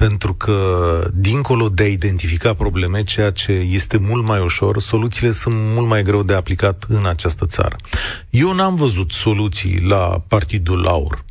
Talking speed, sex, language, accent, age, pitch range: 160 wpm, male, Romanian, native, 30-49, 95-130 Hz